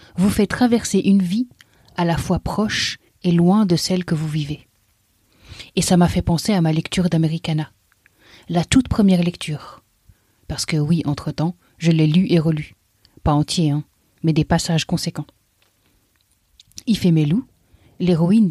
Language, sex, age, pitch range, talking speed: French, female, 30-49, 150-190 Hz, 150 wpm